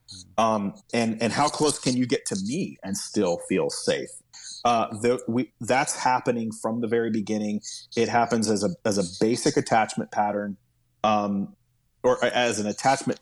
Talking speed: 170 wpm